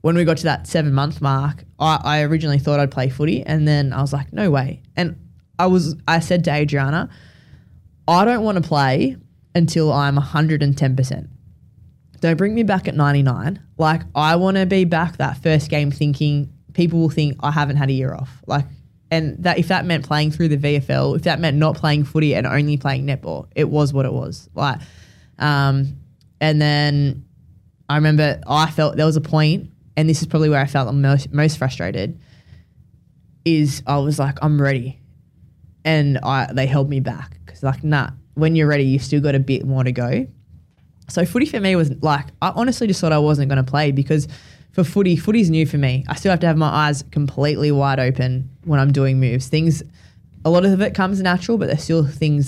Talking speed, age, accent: 210 wpm, 20-39, Australian